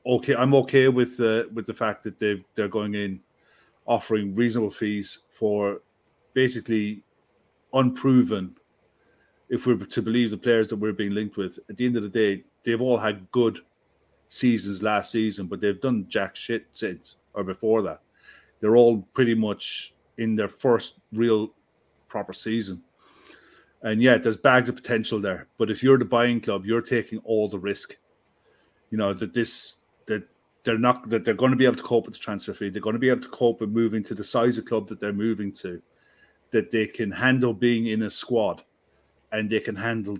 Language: English